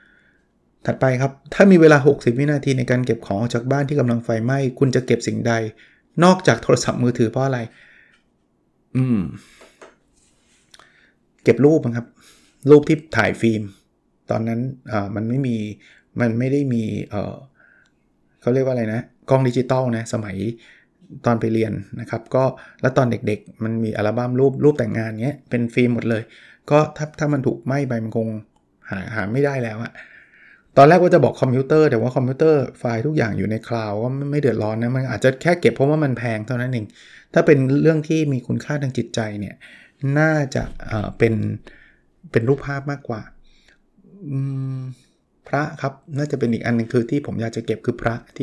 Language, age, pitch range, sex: Thai, 20-39, 115-140 Hz, male